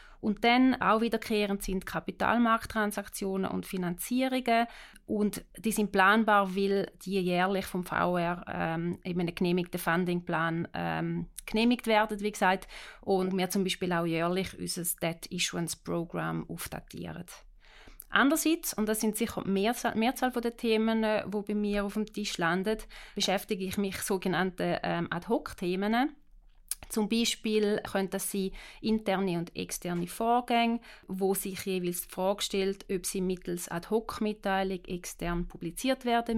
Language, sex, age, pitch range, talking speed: German, female, 30-49, 175-215 Hz, 140 wpm